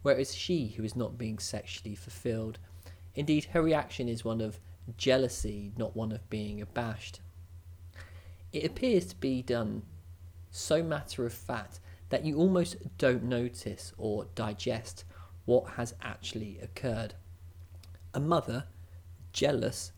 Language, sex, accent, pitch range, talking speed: English, male, British, 90-120 Hz, 130 wpm